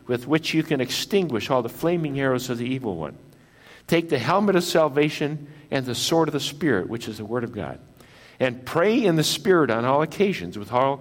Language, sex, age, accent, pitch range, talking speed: English, male, 60-79, American, 125-165 Hz, 220 wpm